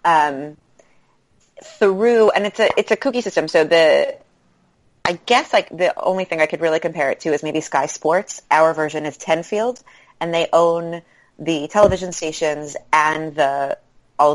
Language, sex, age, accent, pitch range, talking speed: English, female, 30-49, American, 145-175 Hz, 165 wpm